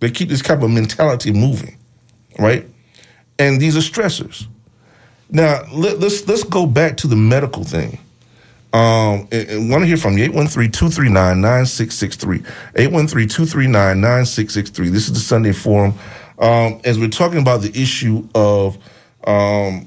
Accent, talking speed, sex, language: American, 135 wpm, male, English